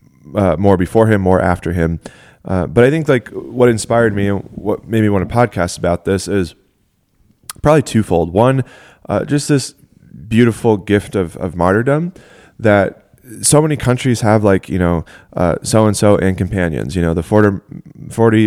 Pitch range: 95-115 Hz